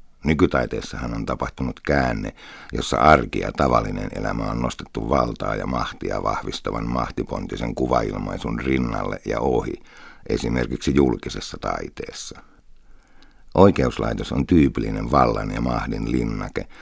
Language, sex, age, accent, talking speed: Finnish, male, 60-79, native, 105 wpm